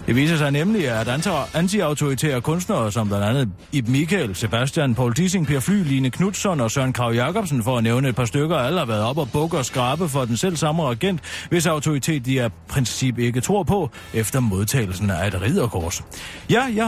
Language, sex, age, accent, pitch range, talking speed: Danish, male, 30-49, native, 120-175 Hz, 205 wpm